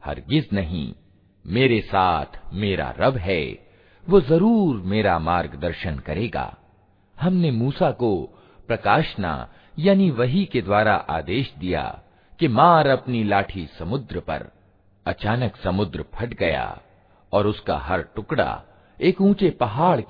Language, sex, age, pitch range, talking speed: Hindi, male, 50-69, 90-140 Hz, 115 wpm